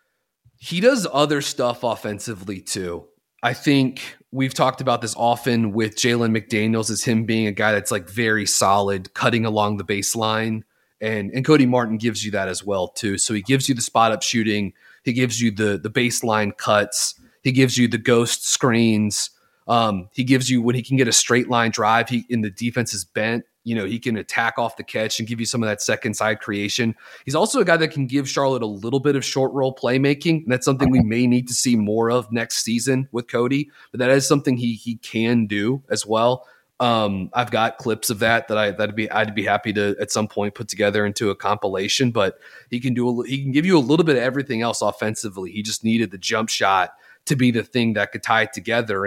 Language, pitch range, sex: English, 110-130 Hz, male